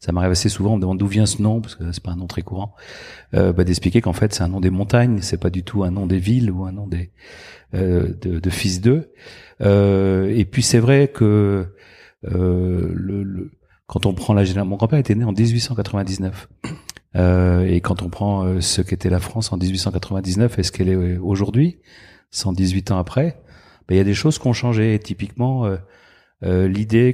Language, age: French, 40-59